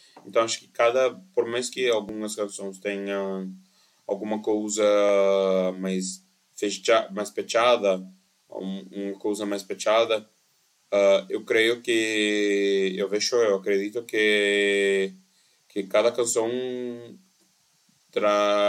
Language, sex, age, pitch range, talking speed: Portuguese, male, 20-39, 95-120 Hz, 105 wpm